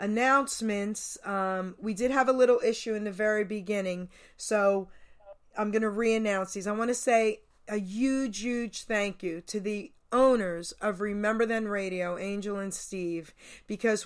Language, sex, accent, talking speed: English, female, American, 160 wpm